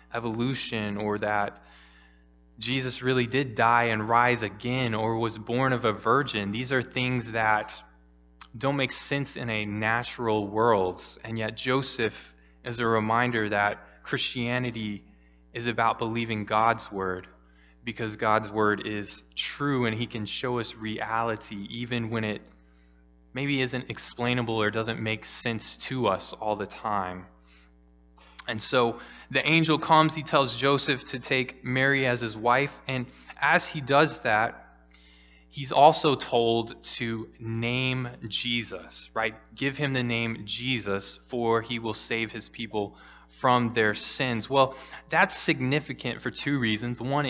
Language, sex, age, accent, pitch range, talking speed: English, male, 20-39, American, 105-130 Hz, 145 wpm